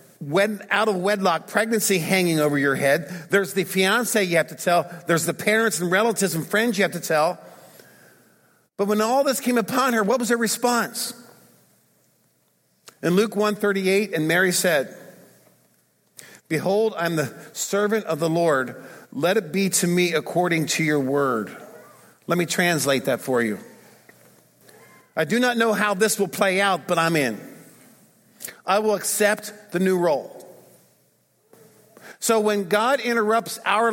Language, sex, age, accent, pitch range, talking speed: English, male, 50-69, American, 180-225 Hz, 160 wpm